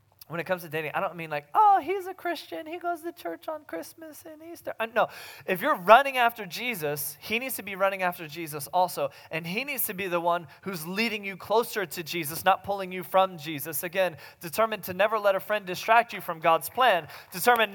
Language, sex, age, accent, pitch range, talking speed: English, male, 20-39, American, 110-185 Hz, 225 wpm